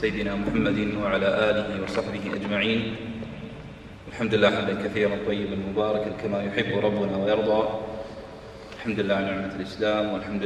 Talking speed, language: 125 wpm, Arabic